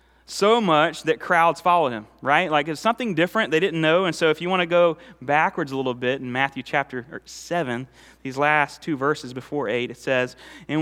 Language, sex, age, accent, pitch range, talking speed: English, male, 30-49, American, 130-170 Hz, 210 wpm